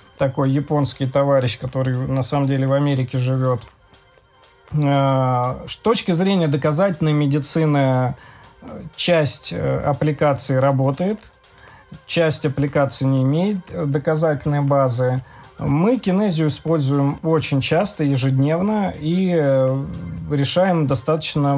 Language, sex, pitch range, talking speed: Russian, male, 130-155 Hz, 90 wpm